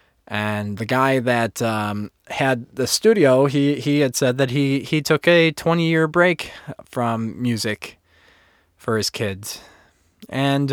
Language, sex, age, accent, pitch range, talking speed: English, male, 20-39, American, 100-130 Hz, 145 wpm